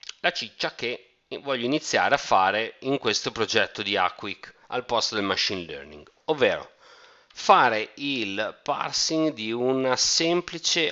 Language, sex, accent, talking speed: Italian, male, native, 130 wpm